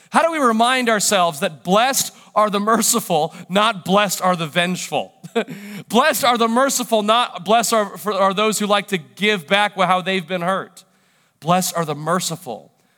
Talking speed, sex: 175 wpm, male